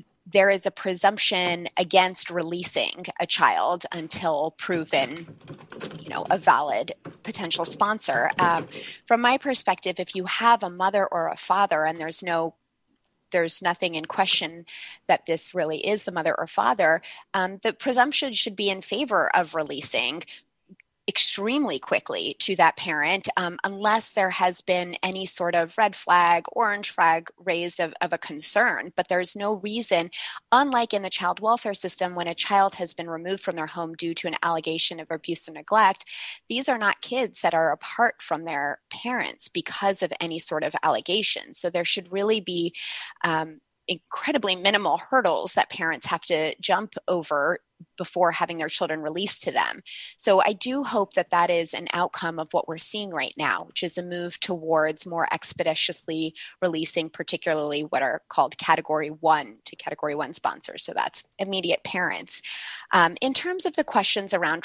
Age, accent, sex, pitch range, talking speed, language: 20-39, American, female, 165-205 Hz, 170 wpm, English